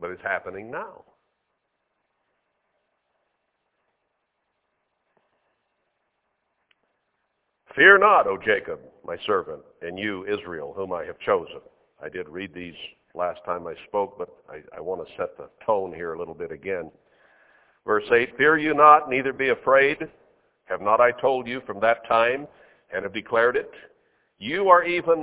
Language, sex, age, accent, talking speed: English, male, 60-79, American, 145 wpm